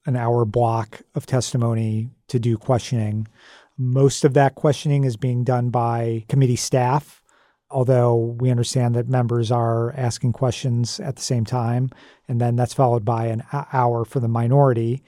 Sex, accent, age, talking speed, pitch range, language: male, American, 40-59, 160 wpm, 115-135 Hz, English